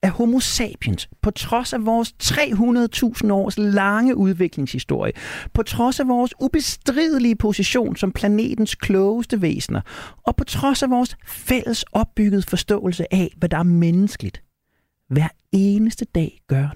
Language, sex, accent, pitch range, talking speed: Danish, male, native, 135-215 Hz, 135 wpm